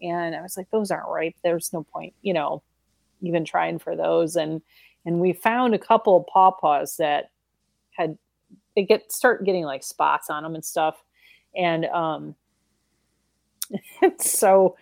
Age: 30-49